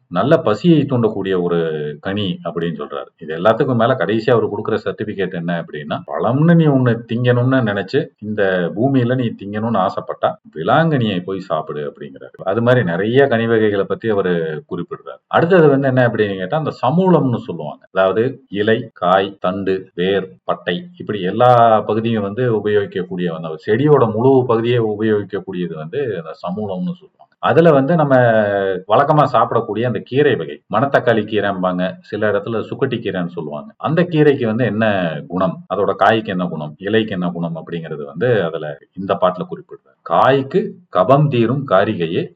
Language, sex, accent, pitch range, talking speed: Tamil, male, native, 95-130 Hz, 135 wpm